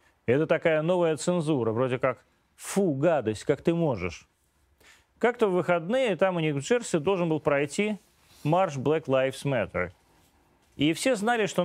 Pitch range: 130-180 Hz